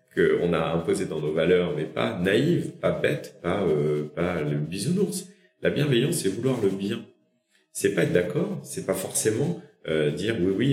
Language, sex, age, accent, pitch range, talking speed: French, male, 40-59, French, 85-145 Hz, 185 wpm